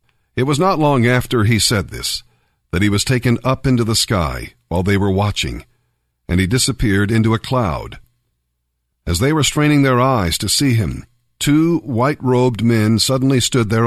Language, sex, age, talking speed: English, male, 50-69, 175 wpm